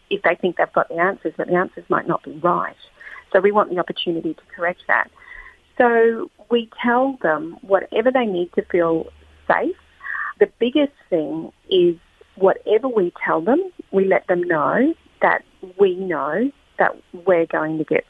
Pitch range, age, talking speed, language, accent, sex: 180-245 Hz, 40-59, 170 wpm, English, Australian, female